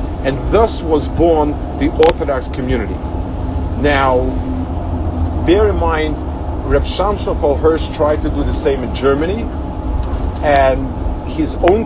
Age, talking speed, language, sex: 50-69, 120 wpm, English, male